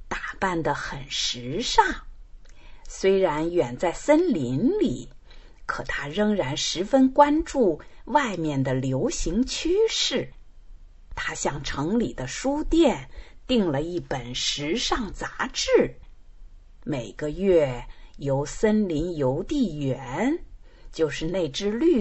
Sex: female